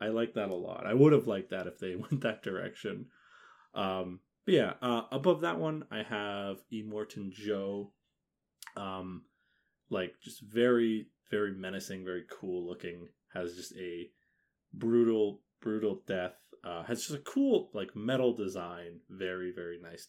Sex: male